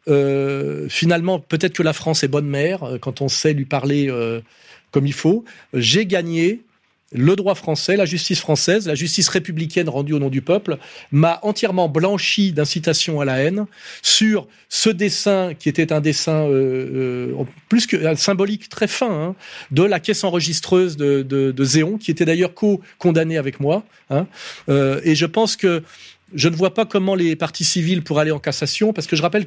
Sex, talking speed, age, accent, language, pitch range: male, 190 wpm, 40-59, French, French, 145-185 Hz